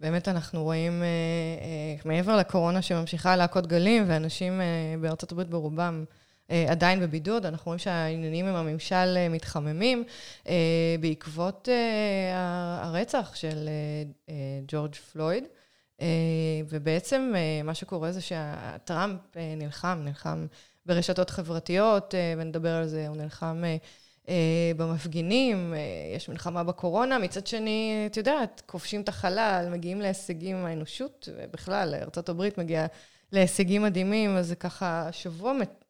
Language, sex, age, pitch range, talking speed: Hebrew, female, 20-39, 165-205 Hz, 110 wpm